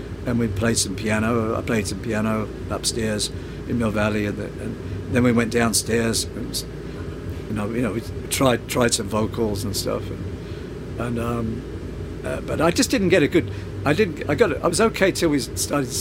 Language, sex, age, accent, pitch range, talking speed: English, male, 60-79, British, 100-130 Hz, 200 wpm